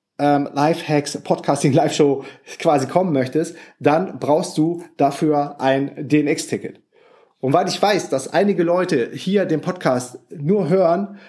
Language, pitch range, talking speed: German, 140-175 Hz, 130 wpm